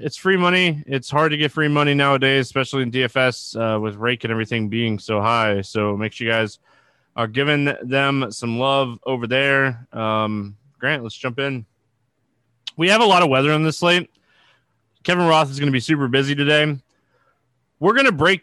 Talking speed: 195 wpm